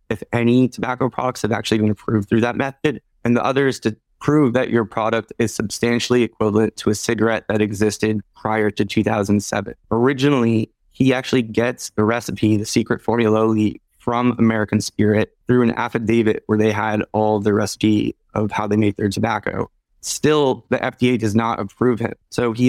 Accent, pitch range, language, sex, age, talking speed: American, 105-120 Hz, English, male, 20-39, 180 wpm